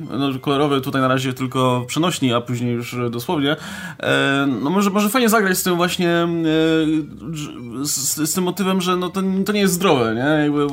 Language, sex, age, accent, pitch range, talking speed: Polish, male, 20-39, native, 125-165 Hz, 180 wpm